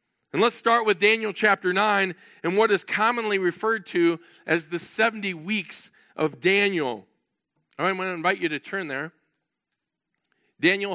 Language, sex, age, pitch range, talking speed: English, male, 40-59, 155-210 Hz, 165 wpm